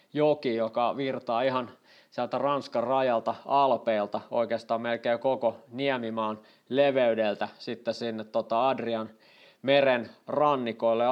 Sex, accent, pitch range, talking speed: male, native, 110-130 Hz, 105 wpm